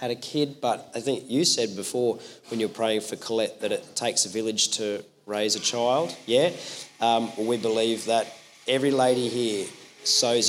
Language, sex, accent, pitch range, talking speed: English, male, Australian, 120-145 Hz, 185 wpm